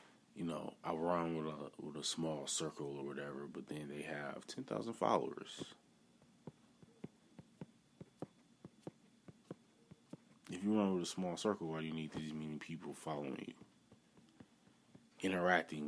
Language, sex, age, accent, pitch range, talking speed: English, male, 20-39, American, 80-105 Hz, 135 wpm